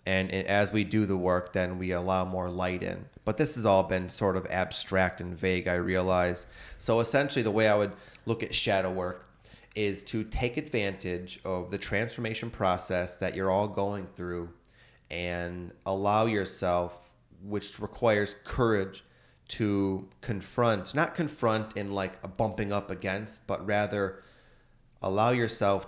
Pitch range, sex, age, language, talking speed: 90-110 Hz, male, 30-49, English, 155 wpm